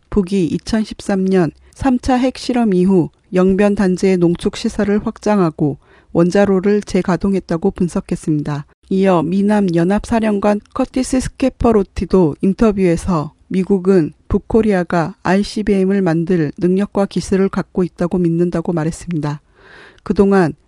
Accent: native